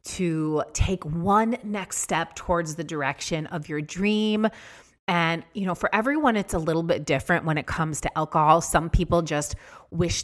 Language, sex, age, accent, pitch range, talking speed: English, female, 30-49, American, 145-175 Hz, 175 wpm